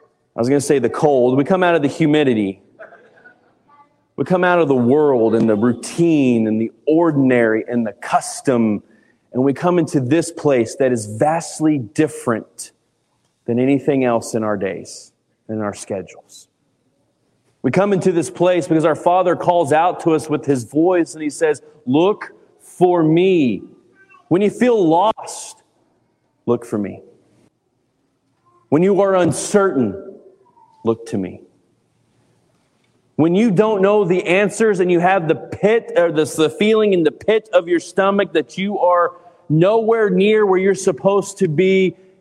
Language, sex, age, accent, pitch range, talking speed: English, male, 30-49, American, 125-185 Hz, 160 wpm